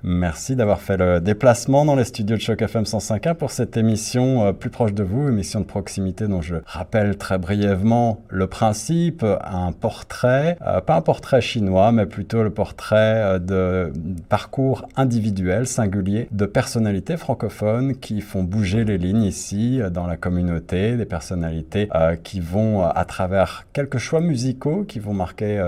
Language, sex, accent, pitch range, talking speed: French, male, French, 90-115 Hz, 155 wpm